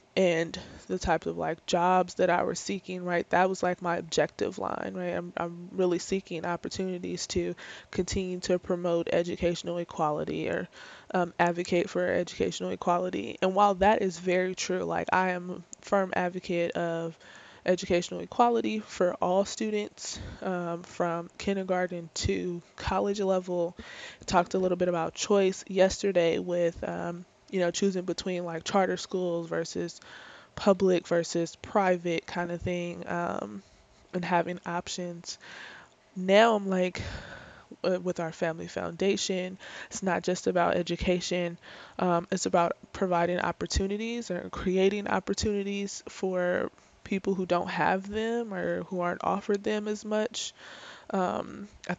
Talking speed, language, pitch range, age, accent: 140 wpm, English, 175-195 Hz, 20-39, American